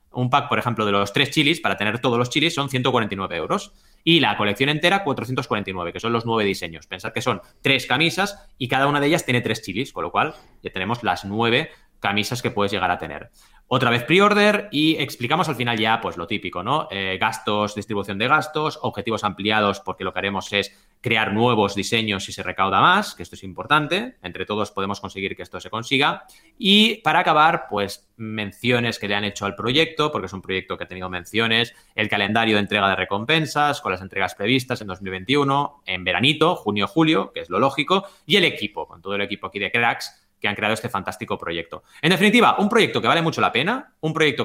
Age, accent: 30-49, Spanish